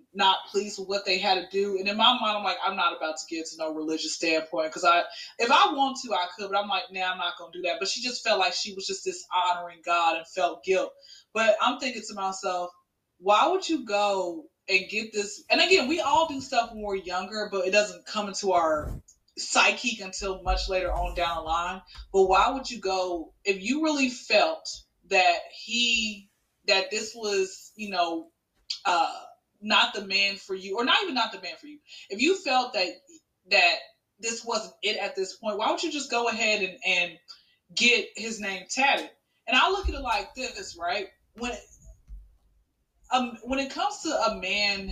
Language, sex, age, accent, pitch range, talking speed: English, female, 20-39, American, 185-270 Hz, 210 wpm